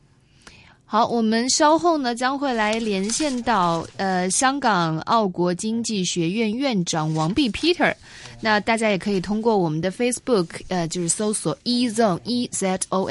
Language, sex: Chinese, female